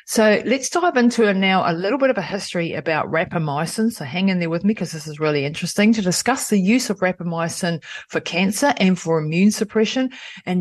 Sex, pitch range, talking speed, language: female, 160-205 Hz, 215 wpm, English